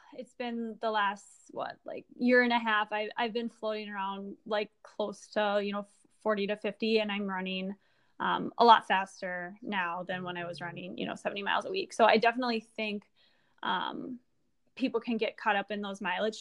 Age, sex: 10-29, female